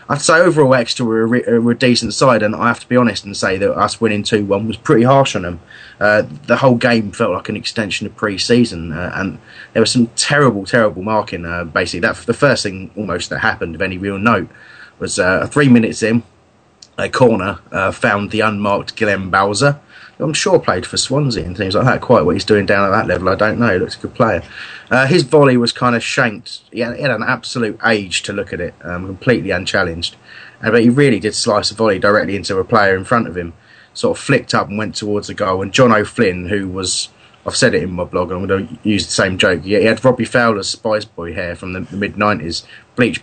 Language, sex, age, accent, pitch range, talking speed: English, male, 30-49, British, 100-120 Hz, 245 wpm